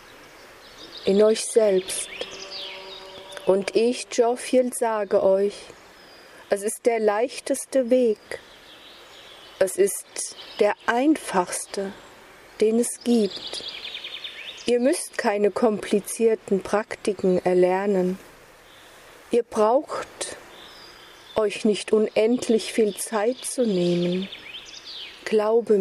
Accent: German